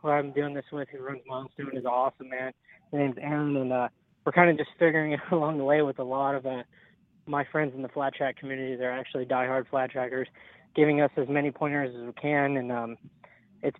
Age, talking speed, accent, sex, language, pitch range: 20-39, 230 wpm, American, male, English, 130-150 Hz